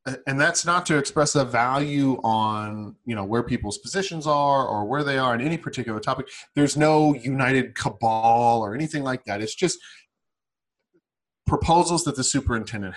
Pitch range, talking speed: 110-145 Hz, 165 wpm